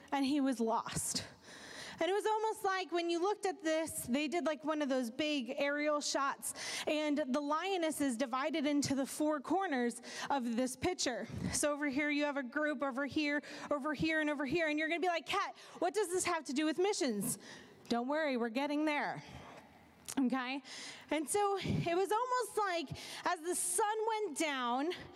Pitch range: 300-405 Hz